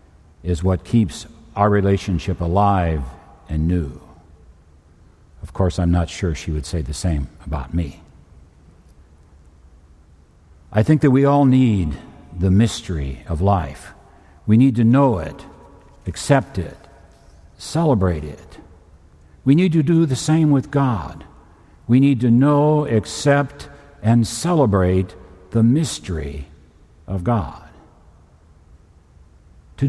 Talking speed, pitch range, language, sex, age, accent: 120 wpm, 75-115 Hz, English, male, 60-79, American